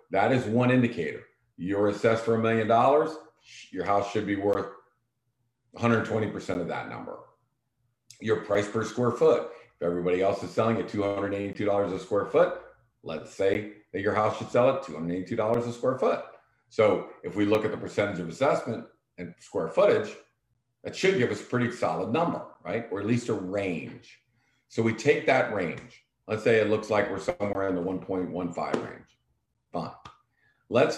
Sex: male